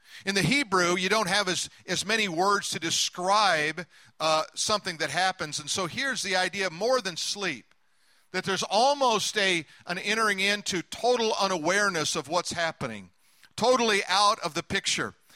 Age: 50-69